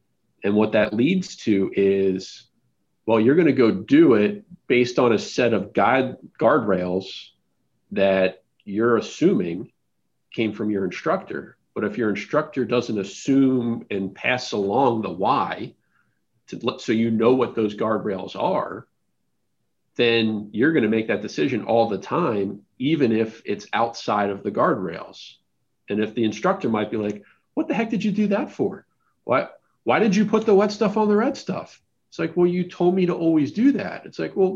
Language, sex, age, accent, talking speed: English, male, 40-59, American, 175 wpm